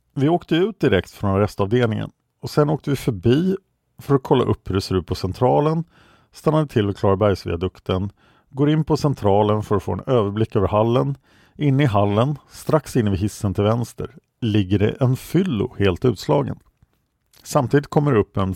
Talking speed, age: 180 wpm, 50-69